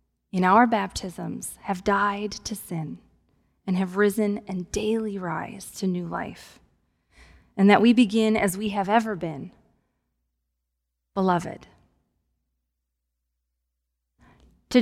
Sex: female